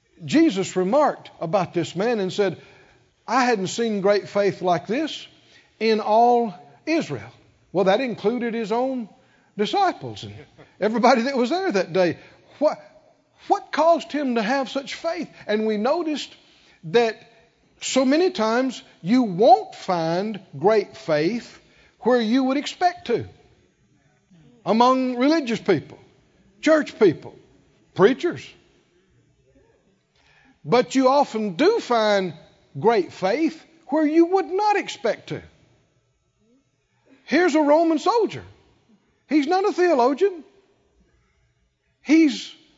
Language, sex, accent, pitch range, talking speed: English, male, American, 200-310 Hz, 115 wpm